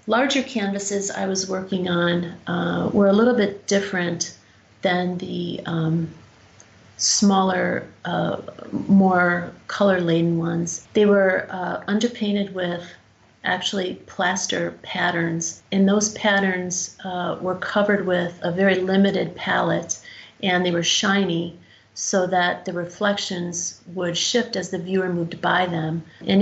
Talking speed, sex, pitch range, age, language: 125 wpm, female, 170-200 Hz, 40-59, English